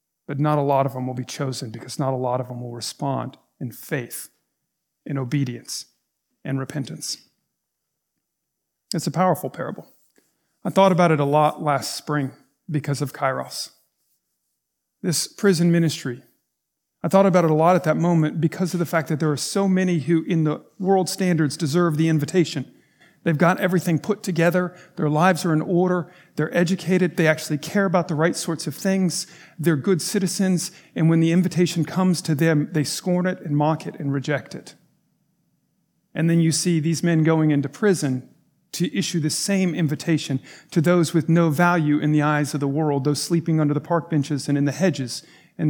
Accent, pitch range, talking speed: American, 145-175 Hz, 190 wpm